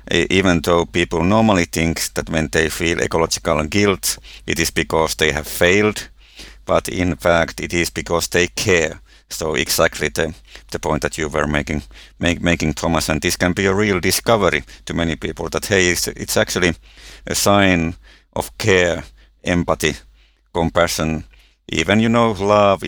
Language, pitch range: English, 80-90 Hz